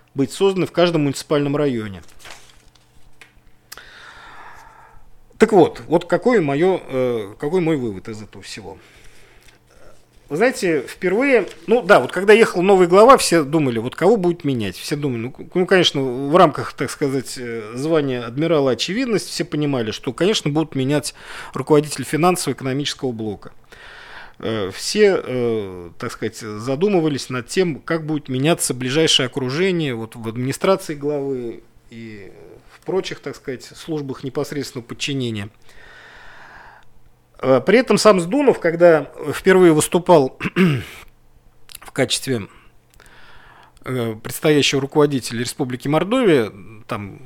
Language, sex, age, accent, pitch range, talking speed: Russian, male, 40-59, native, 125-175 Hz, 110 wpm